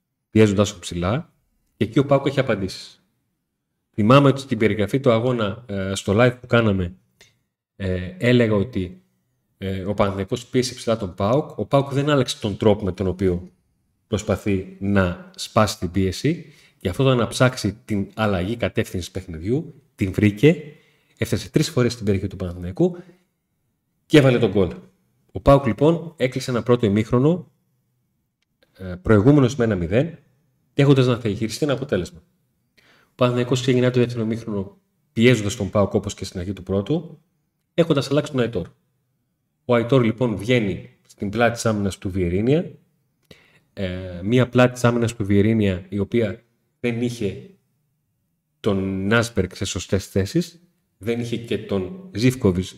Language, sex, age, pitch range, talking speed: Greek, male, 30-49, 100-130 Hz, 145 wpm